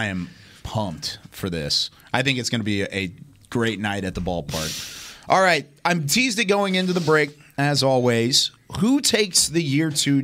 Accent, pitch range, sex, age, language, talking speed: American, 110-140 Hz, male, 30-49, English, 195 wpm